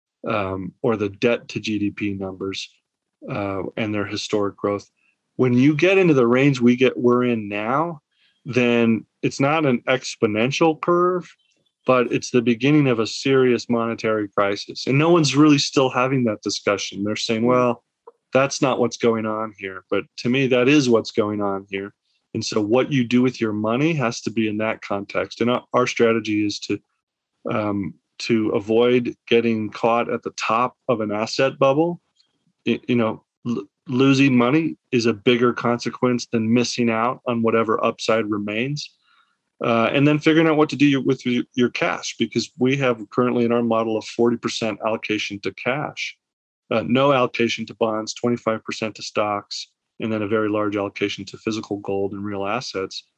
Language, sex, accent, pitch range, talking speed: English, male, American, 110-130 Hz, 175 wpm